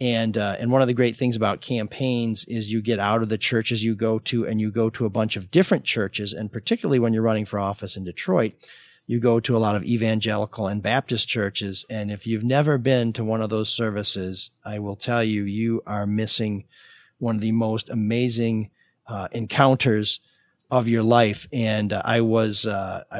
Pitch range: 110-125 Hz